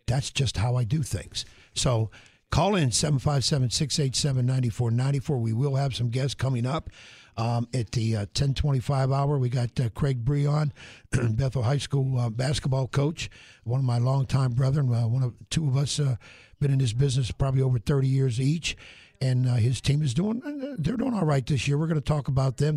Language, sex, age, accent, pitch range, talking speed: English, male, 60-79, American, 120-145 Hz, 185 wpm